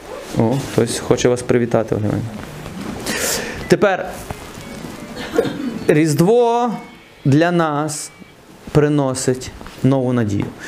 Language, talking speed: Ukrainian, 65 wpm